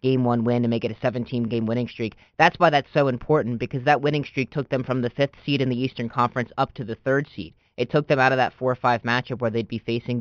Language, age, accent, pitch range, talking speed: English, 20-39, American, 120-160 Hz, 275 wpm